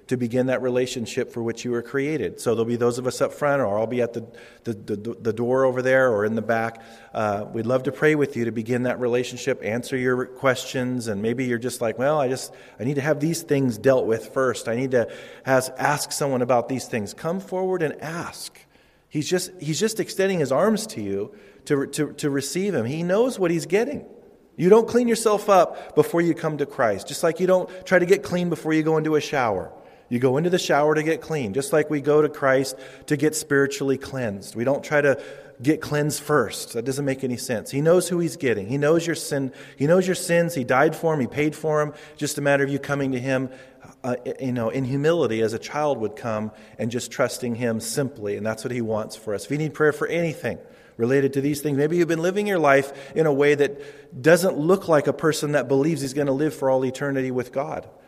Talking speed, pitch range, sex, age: 245 wpm, 125-155 Hz, male, 40-59